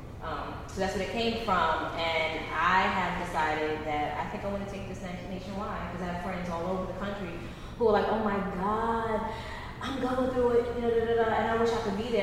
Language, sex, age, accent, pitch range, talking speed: English, female, 20-39, American, 160-200 Hz, 250 wpm